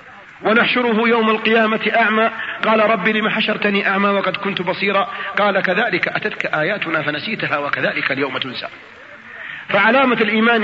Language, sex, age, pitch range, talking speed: Arabic, male, 40-59, 210-280 Hz, 125 wpm